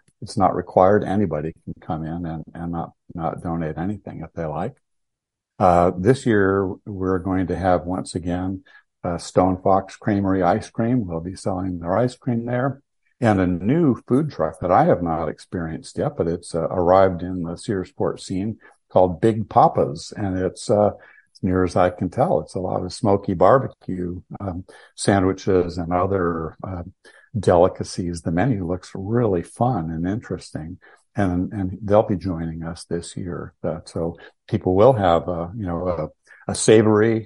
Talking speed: 170 wpm